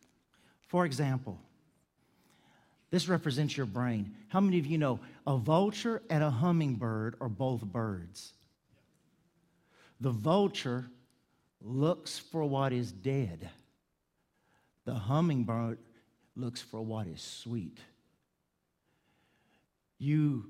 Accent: American